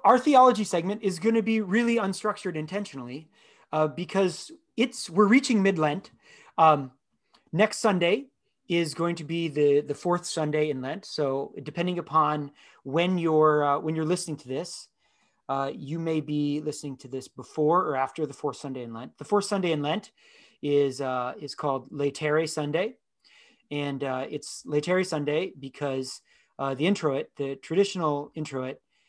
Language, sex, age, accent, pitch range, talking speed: English, male, 30-49, American, 135-180 Hz, 165 wpm